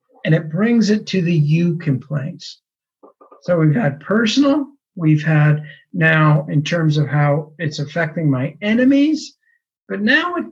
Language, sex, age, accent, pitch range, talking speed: English, male, 50-69, American, 155-230 Hz, 150 wpm